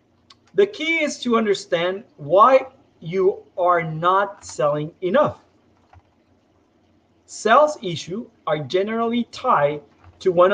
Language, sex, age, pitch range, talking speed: English, male, 40-59, 150-230 Hz, 100 wpm